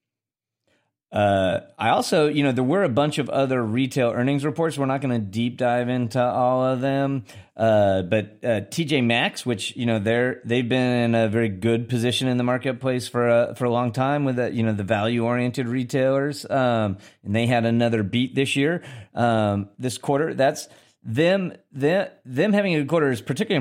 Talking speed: 195 wpm